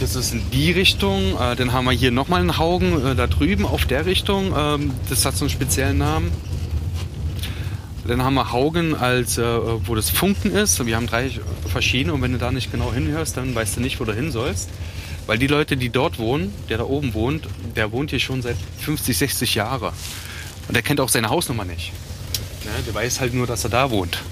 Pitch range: 95-120 Hz